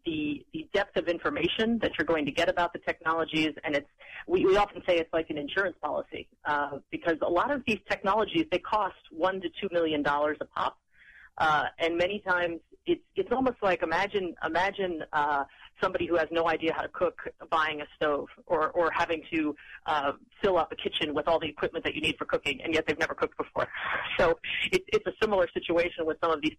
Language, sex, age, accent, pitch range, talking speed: English, female, 30-49, American, 155-185 Hz, 215 wpm